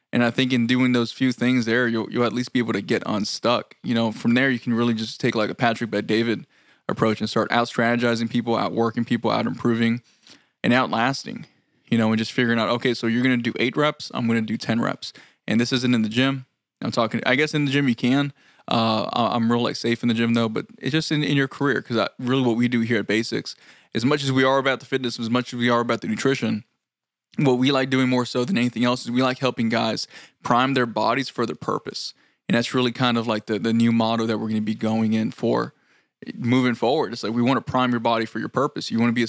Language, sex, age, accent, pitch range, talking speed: English, male, 20-39, American, 115-125 Hz, 270 wpm